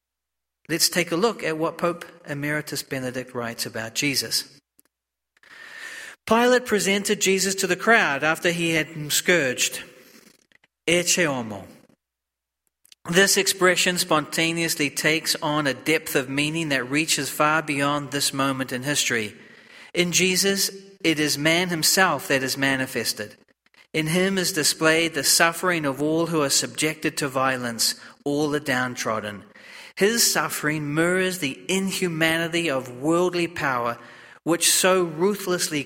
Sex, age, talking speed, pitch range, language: male, 40-59, 125 wpm, 130-175 Hz, English